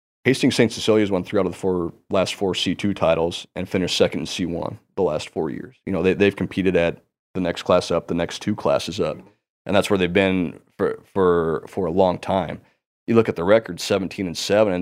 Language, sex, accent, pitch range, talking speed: English, male, American, 85-95 Hz, 230 wpm